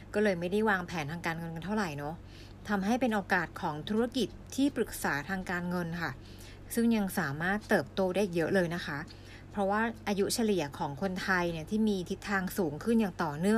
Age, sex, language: 60-79, female, Thai